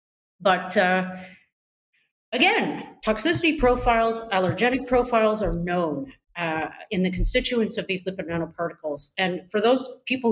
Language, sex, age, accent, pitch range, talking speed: English, female, 30-49, American, 170-220 Hz, 120 wpm